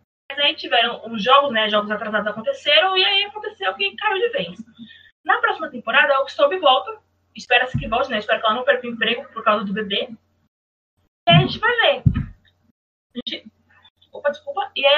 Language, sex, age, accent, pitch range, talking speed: Portuguese, female, 20-39, Brazilian, 230-320 Hz, 200 wpm